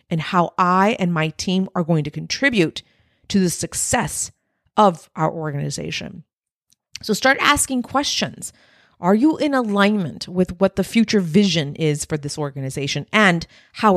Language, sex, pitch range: English, female, 170-250 Hz